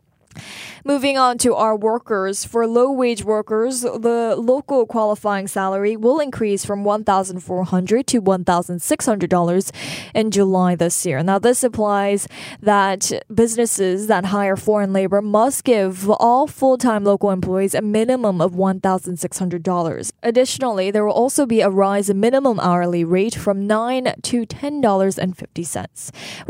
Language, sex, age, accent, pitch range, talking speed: English, female, 10-29, American, 185-230 Hz, 125 wpm